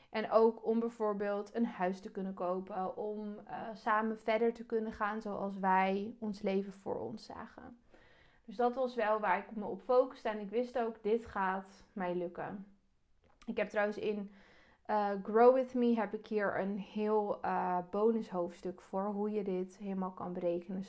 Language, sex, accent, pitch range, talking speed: Dutch, female, Dutch, 195-230 Hz, 180 wpm